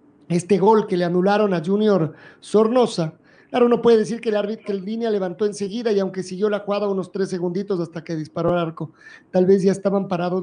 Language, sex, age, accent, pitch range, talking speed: Spanish, male, 40-59, Mexican, 175-230 Hz, 215 wpm